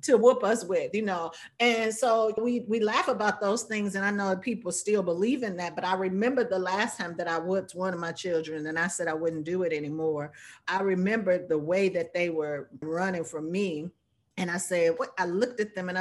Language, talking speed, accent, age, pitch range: English, 230 wpm, American, 40-59, 165-205 Hz